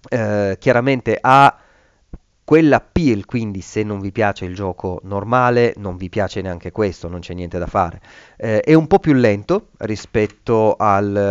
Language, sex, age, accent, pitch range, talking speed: Italian, male, 30-49, native, 100-130 Hz, 165 wpm